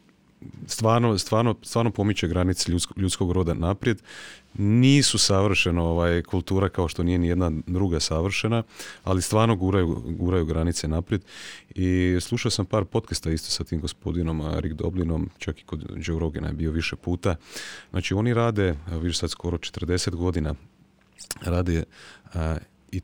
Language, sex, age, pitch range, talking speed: Croatian, male, 30-49, 85-100 Hz, 140 wpm